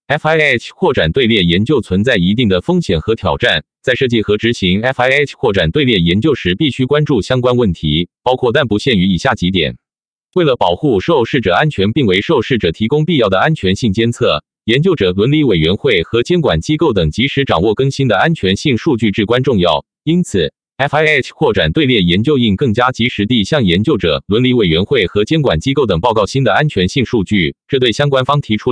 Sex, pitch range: male, 100-145 Hz